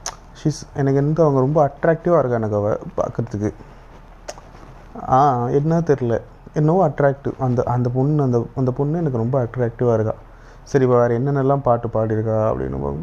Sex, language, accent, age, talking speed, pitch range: male, Tamil, native, 30-49, 145 wpm, 110-140 Hz